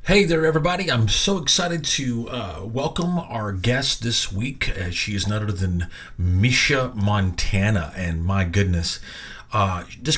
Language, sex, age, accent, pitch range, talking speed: English, male, 40-59, American, 95-120 Hz, 145 wpm